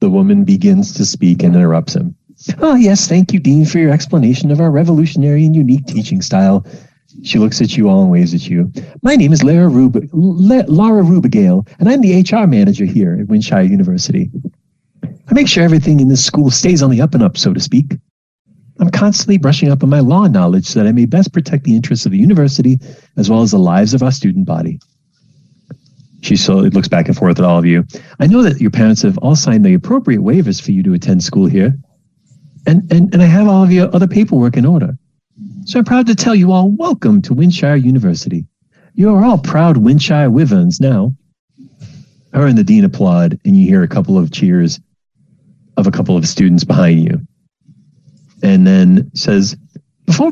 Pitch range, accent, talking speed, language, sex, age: 145-195 Hz, American, 205 wpm, English, male, 40-59